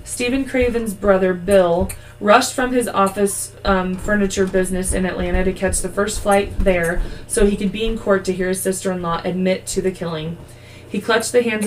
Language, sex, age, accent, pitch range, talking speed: English, female, 20-39, American, 175-200 Hz, 190 wpm